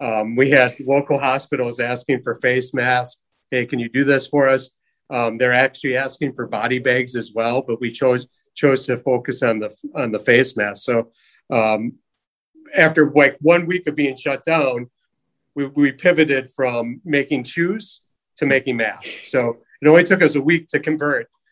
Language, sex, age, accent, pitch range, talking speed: English, male, 40-59, American, 120-140 Hz, 180 wpm